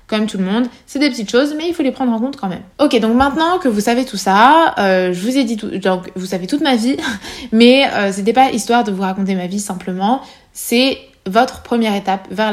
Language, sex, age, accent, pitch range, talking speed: French, female, 20-39, French, 195-245 Hz, 255 wpm